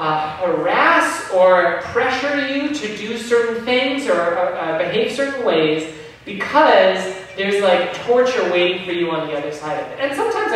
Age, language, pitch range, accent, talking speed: 30-49, English, 165-235 Hz, American, 155 wpm